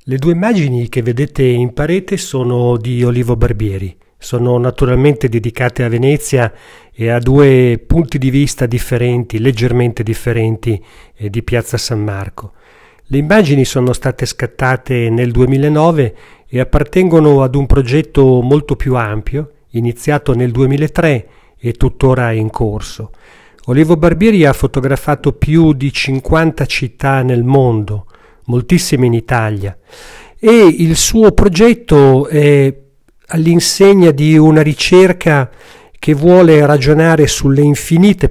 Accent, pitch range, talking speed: native, 120-150 Hz, 120 wpm